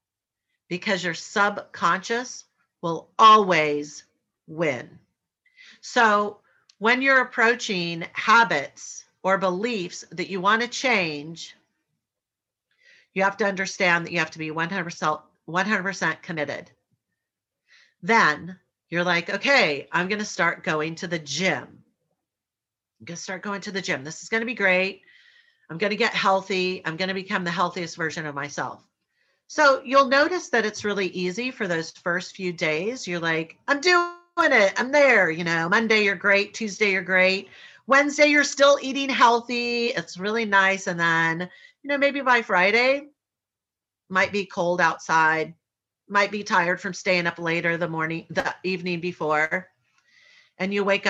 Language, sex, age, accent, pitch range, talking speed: English, female, 40-59, American, 165-225 Hz, 155 wpm